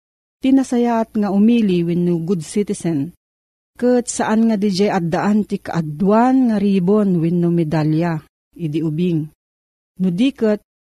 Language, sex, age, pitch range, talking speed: Filipino, female, 40-59, 165-210 Hz, 120 wpm